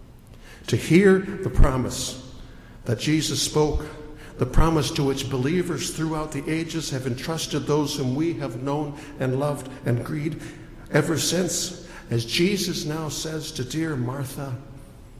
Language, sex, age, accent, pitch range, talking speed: English, male, 60-79, American, 115-155 Hz, 140 wpm